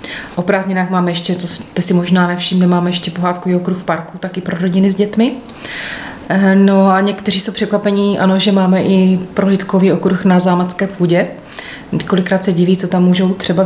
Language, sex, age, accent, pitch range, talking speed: Czech, female, 30-49, native, 175-190 Hz, 185 wpm